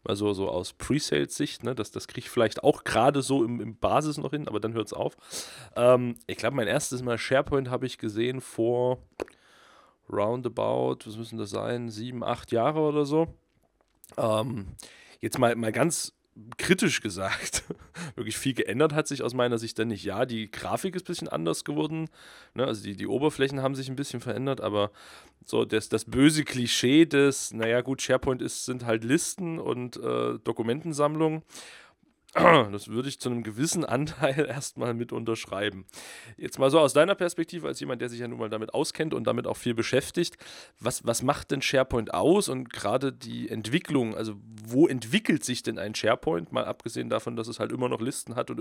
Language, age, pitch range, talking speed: German, 30-49, 110-140 Hz, 190 wpm